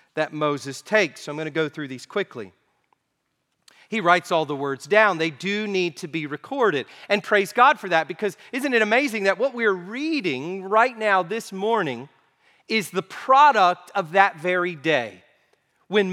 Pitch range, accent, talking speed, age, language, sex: 160-210 Hz, American, 180 wpm, 40-59, English, male